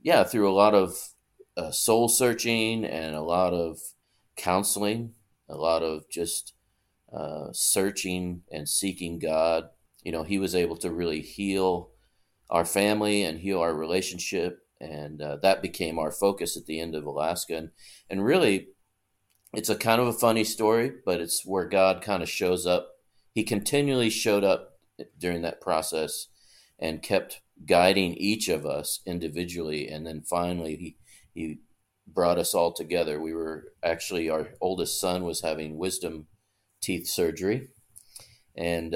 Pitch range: 85-110 Hz